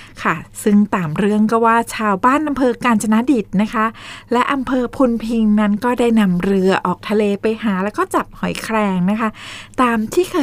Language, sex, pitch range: Thai, female, 195-245 Hz